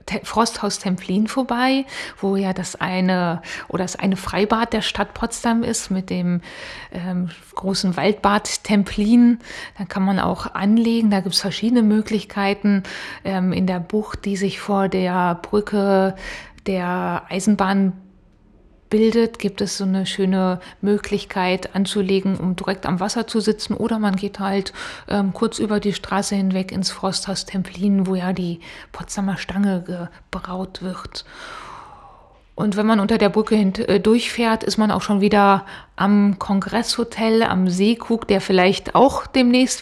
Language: German